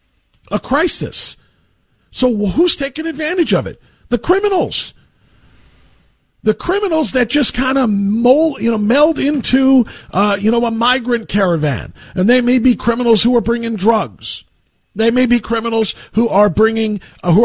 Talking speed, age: 150 wpm, 50-69